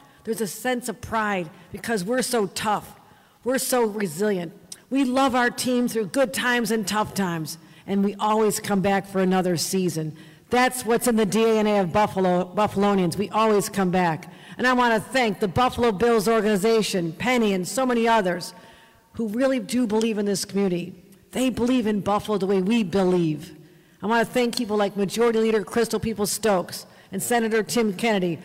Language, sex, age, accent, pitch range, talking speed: English, female, 50-69, American, 195-245 Hz, 180 wpm